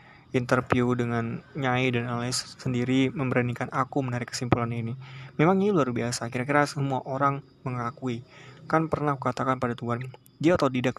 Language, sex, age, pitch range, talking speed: Indonesian, male, 20-39, 120-140 Hz, 145 wpm